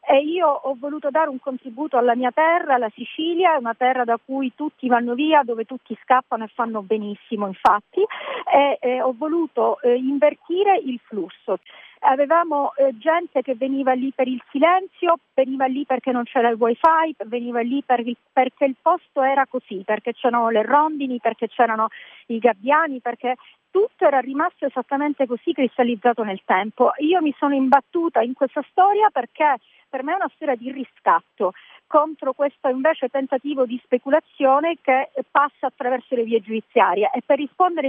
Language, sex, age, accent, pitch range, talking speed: Italian, female, 40-59, native, 245-310 Hz, 170 wpm